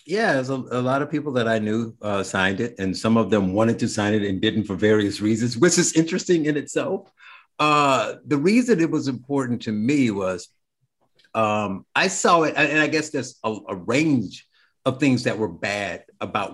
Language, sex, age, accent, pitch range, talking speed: English, male, 50-69, American, 100-130 Hz, 205 wpm